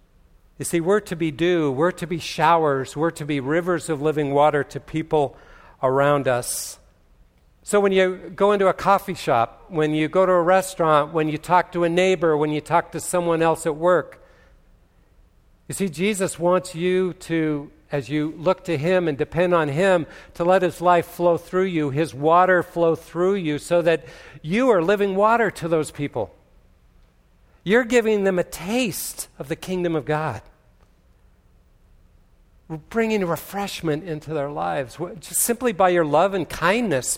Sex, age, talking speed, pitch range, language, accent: male, 50-69, 175 wpm, 145-180 Hz, English, American